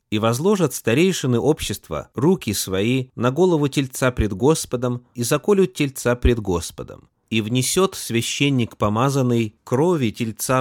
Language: Russian